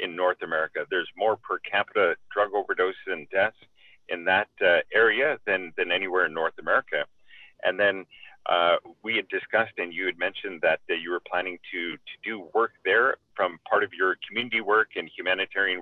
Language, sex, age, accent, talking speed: English, male, 40-59, American, 185 wpm